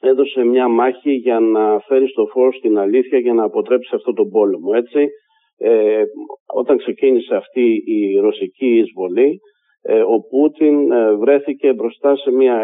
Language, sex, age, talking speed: Greek, male, 50-69, 140 wpm